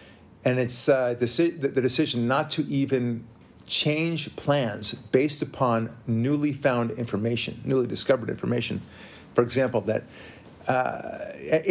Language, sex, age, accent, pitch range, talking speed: English, male, 50-69, American, 110-145 Hz, 115 wpm